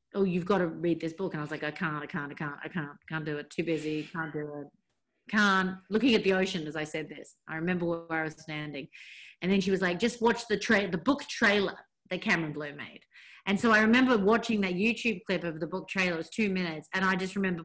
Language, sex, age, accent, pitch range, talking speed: English, female, 40-59, Australian, 160-205 Hz, 265 wpm